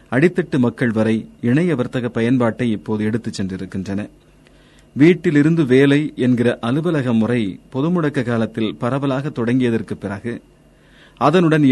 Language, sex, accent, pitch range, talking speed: Tamil, male, native, 115-145 Hz, 110 wpm